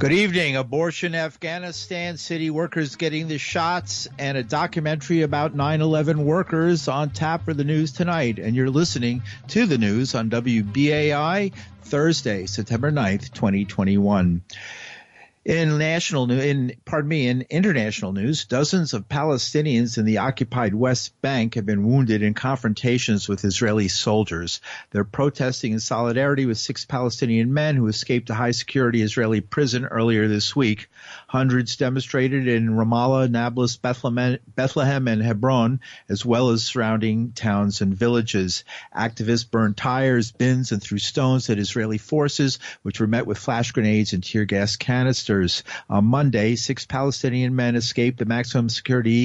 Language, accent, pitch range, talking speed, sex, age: English, American, 110-140 Hz, 145 wpm, male, 50-69